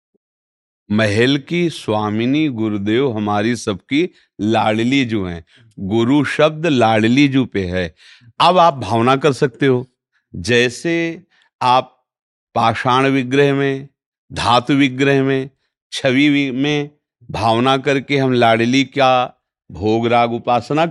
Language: Hindi